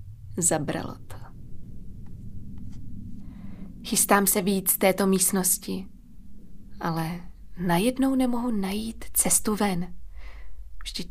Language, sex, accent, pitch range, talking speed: Czech, female, native, 135-195 Hz, 80 wpm